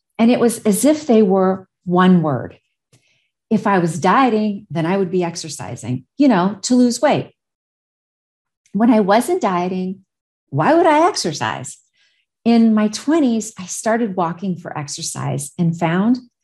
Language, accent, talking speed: English, American, 150 wpm